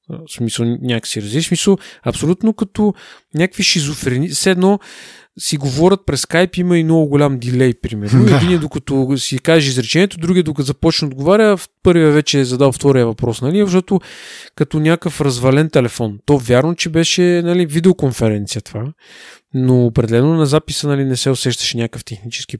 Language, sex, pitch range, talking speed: Bulgarian, male, 125-170 Hz, 155 wpm